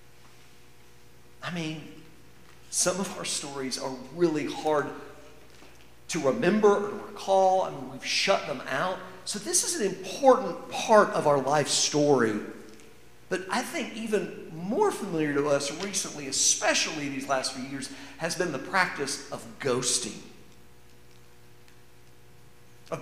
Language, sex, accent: English, male, American